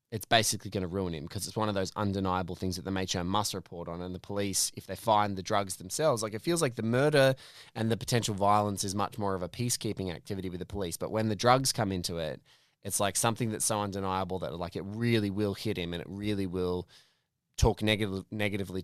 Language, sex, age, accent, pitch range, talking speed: English, male, 20-39, Australian, 90-110 Hz, 240 wpm